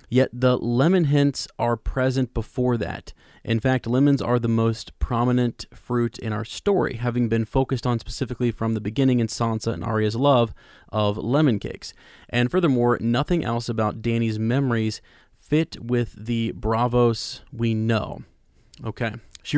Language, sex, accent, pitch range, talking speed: English, male, American, 110-125 Hz, 155 wpm